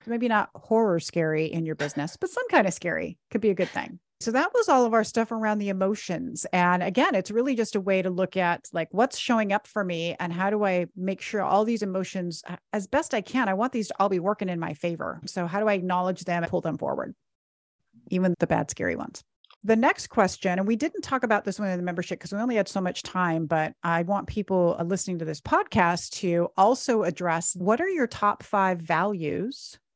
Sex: female